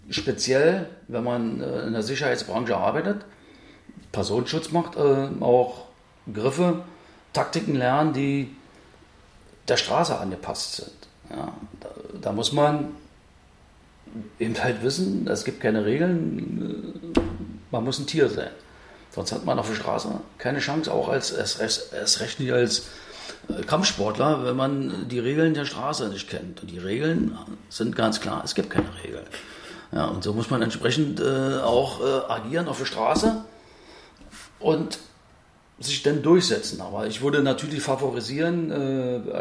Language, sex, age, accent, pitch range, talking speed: German, male, 40-59, German, 120-155 Hz, 135 wpm